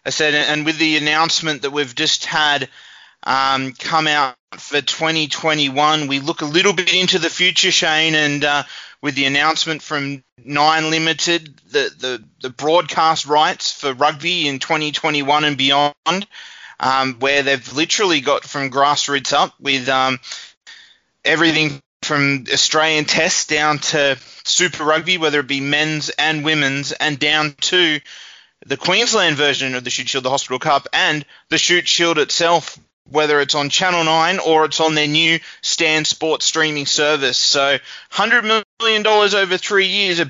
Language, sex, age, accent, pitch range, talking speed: English, male, 20-39, Australian, 145-170 Hz, 160 wpm